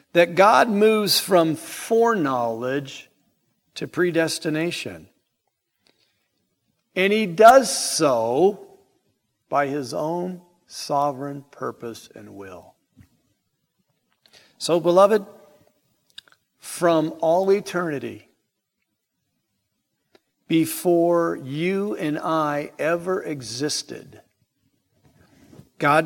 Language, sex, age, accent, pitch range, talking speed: English, male, 50-69, American, 145-195 Hz, 70 wpm